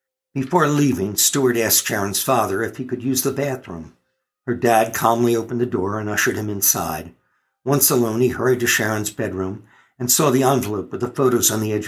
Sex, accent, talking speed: male, American, 195 wpm